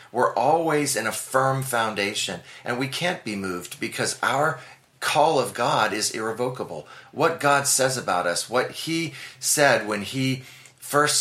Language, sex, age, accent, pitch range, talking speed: English, male, 30-49, American, 100-130 Hz, 155 wpm